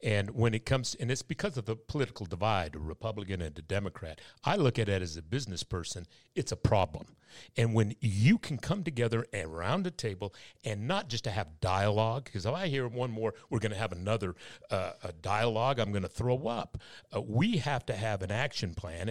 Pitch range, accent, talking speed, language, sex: 100-125 Hz, American, 215 wpm, English, male